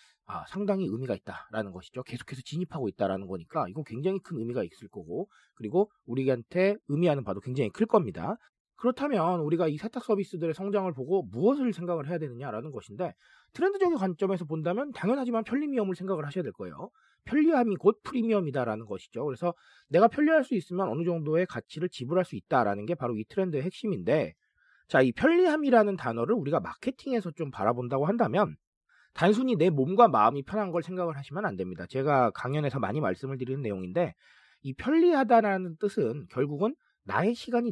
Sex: male